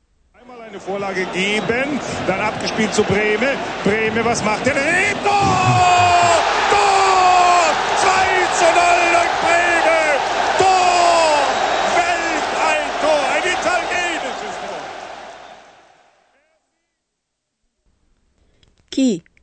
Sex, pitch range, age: male, 190-275 Hz, 40-59